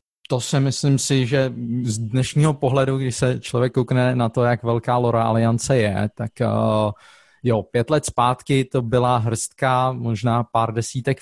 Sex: male